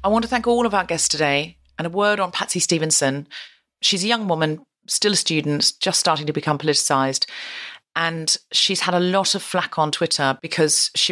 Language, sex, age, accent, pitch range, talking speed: English, female, 40-59, British, 145-185 Hz, 205 wpm